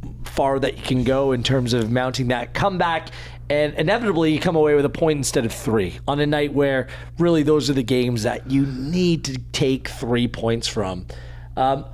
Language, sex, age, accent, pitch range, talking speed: English, male, 30-49, American, 125-155 Hz, 200 wpm